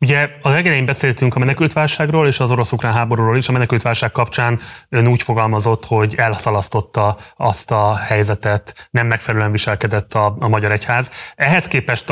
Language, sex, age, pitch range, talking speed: Hungarian, male, 20-39, 110-130 Hz, 155 wpm